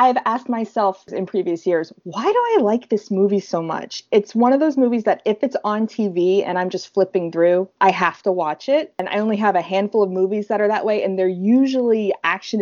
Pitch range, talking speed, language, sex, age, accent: 190-240 Hz, 240 wpm, English, female, 20-39, American